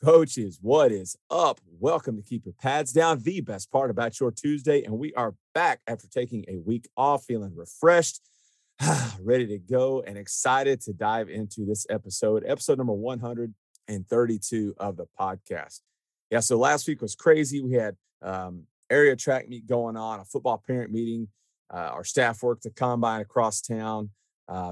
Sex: male